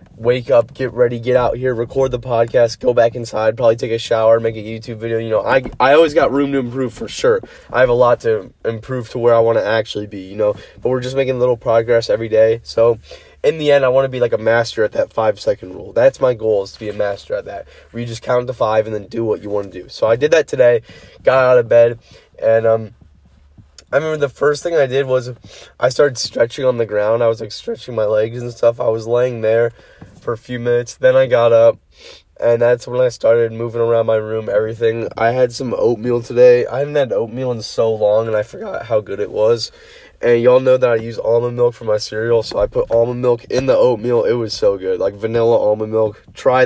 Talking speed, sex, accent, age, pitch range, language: 255 wpm, male, American, 20-39, 115-135 Hz, English